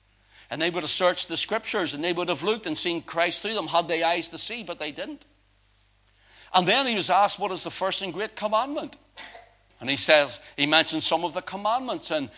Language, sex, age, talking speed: English, male, 60-79, 230 wpm